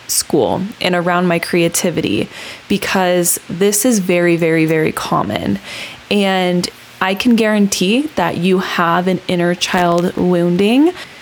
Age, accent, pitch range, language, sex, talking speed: 20-39, American, 175-205 Hz, English, female, 125 wpm